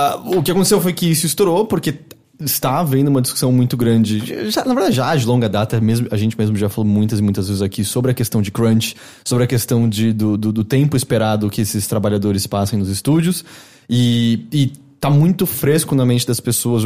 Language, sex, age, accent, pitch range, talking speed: English, male, 20-39, Brazilian, 110-140 Hz, 210 wpm